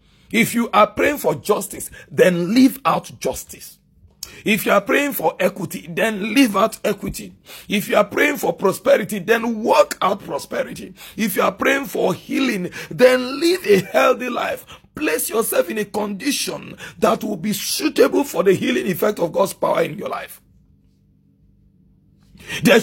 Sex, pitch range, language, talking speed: male, 185-260 Hz, English, 160 wpm